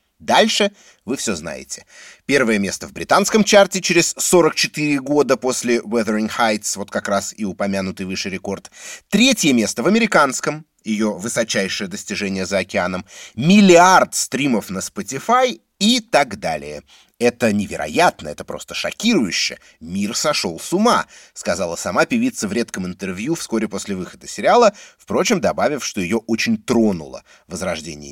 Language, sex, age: Russian, male, 30-49